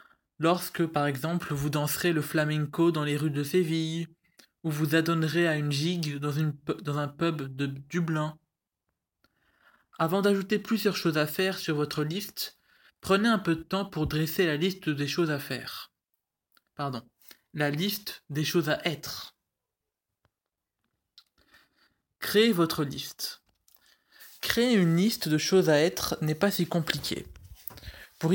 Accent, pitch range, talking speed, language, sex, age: French, 150-190 Hz, 140 wpm, French, male, 20-39